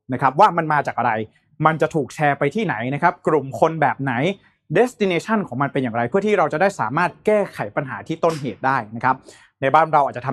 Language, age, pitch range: Thai, 20-39, 140-190 Hz